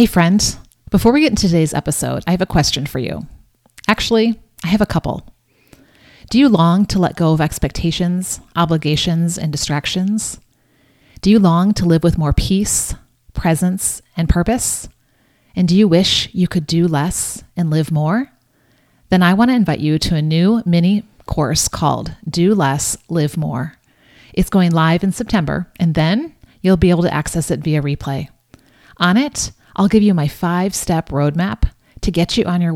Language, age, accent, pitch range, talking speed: English, 30-49, American, 155-195 Hz, 175 wpm